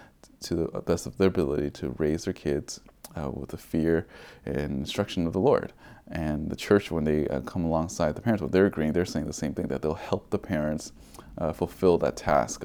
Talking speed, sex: 225 wpm, male